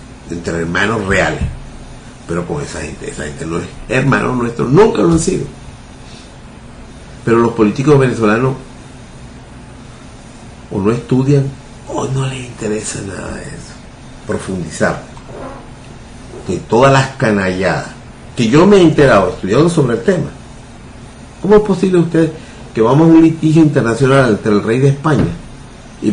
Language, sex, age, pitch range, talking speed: Spanish, male, 50-69, 110-140 Hz, 140 wpm